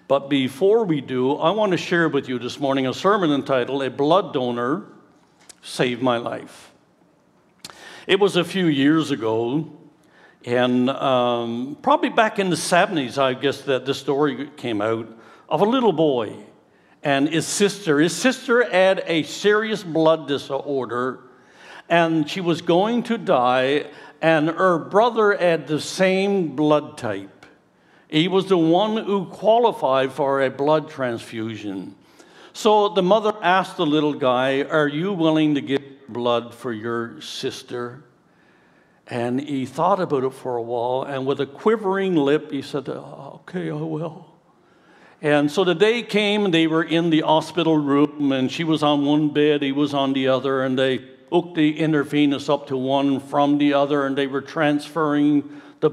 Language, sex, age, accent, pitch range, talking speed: English, male, 60-79, American, 135-170 Hz, 165 wpm